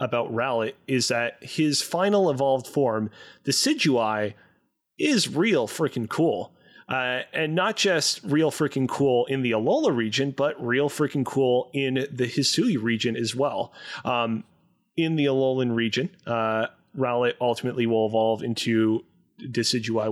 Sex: male